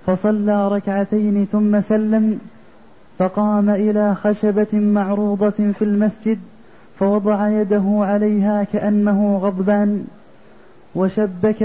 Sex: male